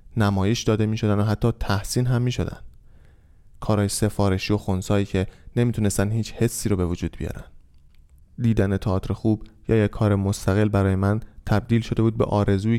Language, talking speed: Persian, 170 wpm